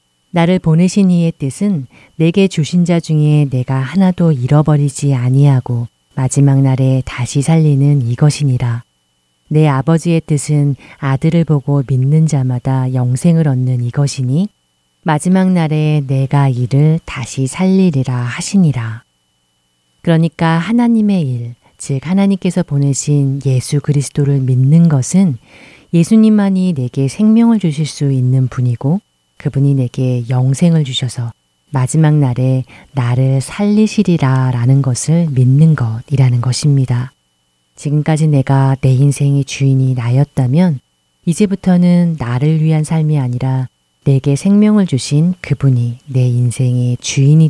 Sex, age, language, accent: female, 40-59, Korean, native